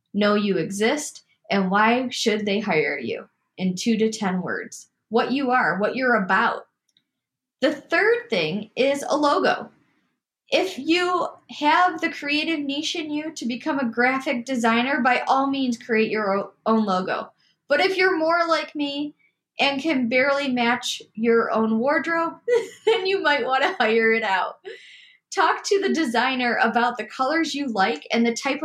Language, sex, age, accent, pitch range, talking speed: English, female, 10-29, American, 230-310 Hz, 165 wpm